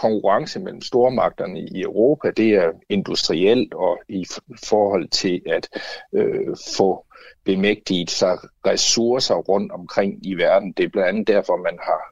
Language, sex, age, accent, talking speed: Danish, male, 60-79, native, 140 wpm